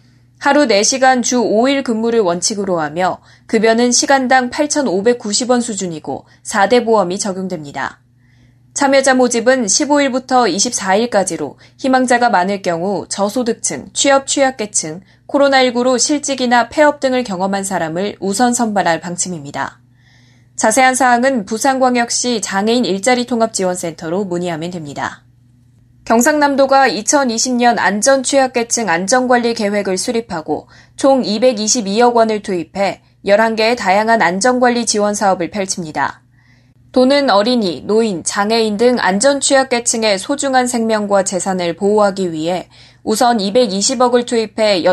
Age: 20-39